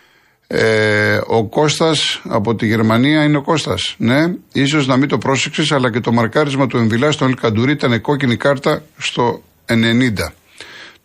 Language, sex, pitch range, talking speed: Greek, male, 110-140 Hz, 150 wpm